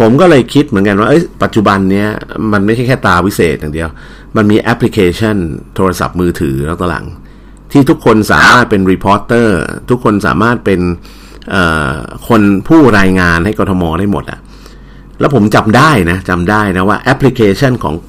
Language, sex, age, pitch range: Thai, male, 50-69, 90-120 Hz